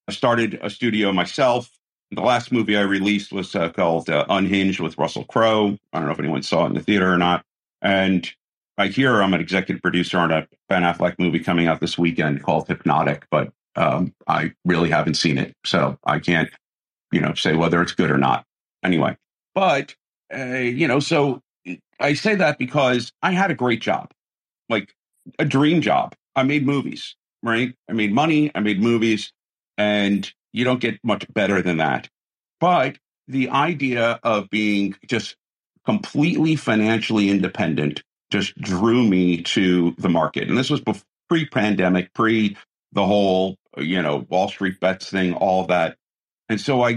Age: 50-69